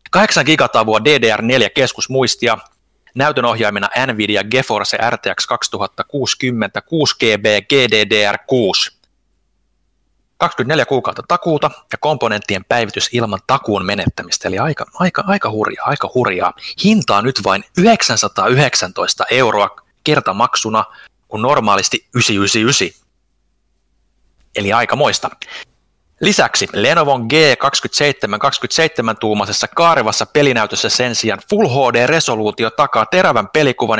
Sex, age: male, 30-49